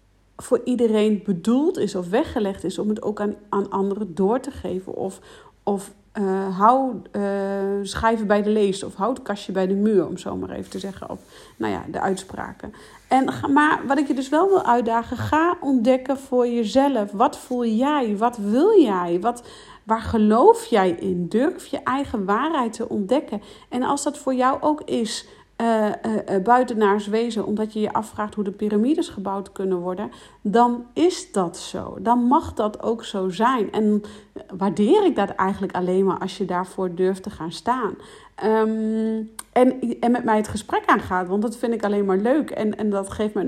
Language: Dutch